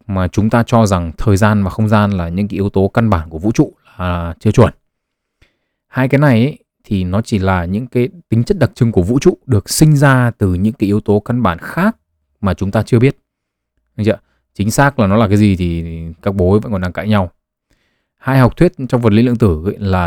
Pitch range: 95-125 Hz